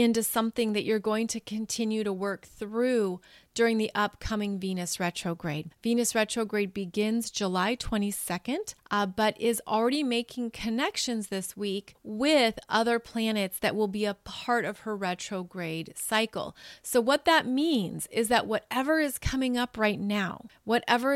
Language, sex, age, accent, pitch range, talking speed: English, female, 30-49, American, 205-250 Hz, 150 wpm